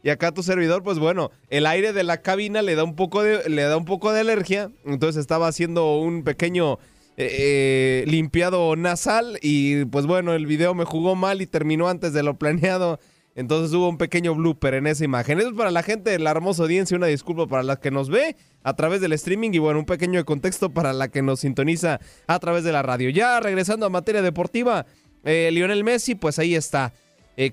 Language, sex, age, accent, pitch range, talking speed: Spanish, male, 20-39, Mexican, 155-195 Hz, 215 wpm